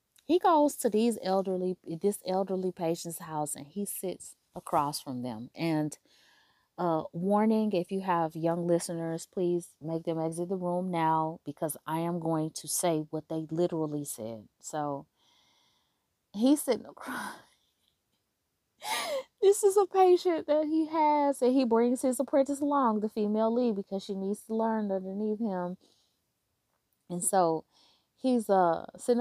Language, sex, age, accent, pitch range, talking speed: English, female, 30-49, American, 160-220 Hz, 150 wpm